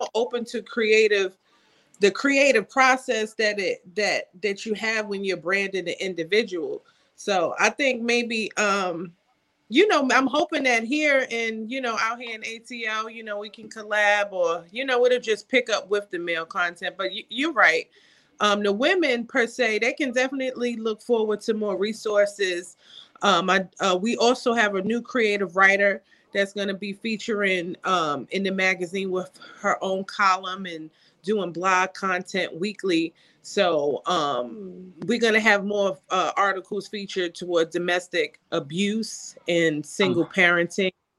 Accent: American